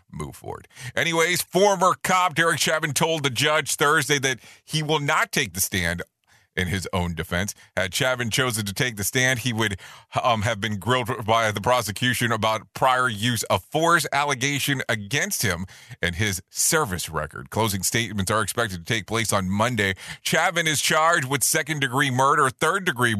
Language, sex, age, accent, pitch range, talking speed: English, male, 40-59, American, 105-155 Hz, 170 wpm